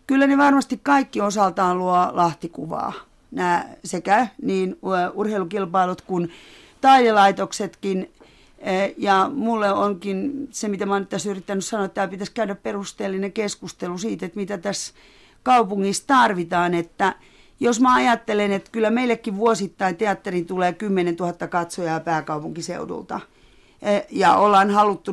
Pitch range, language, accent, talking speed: 185-225 Hz, Finnish, native, 125 wpm